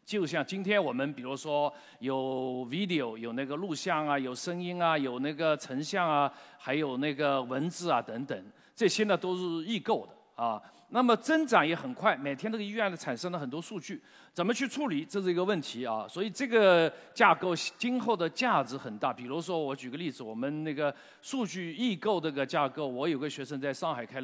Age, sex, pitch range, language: 50-69, male, 135-210 Hz, Chinese